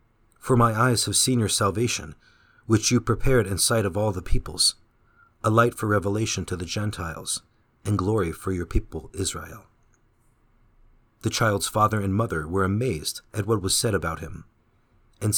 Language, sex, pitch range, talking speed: English, male, 95-115 Hz, 170 wpm